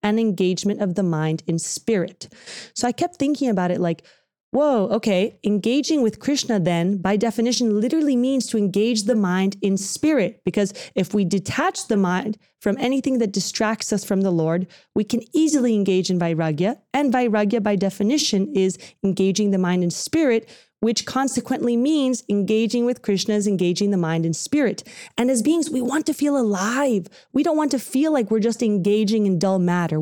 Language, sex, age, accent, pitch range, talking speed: English, female, 30-49, American, 185-245 Hz, 185 wpm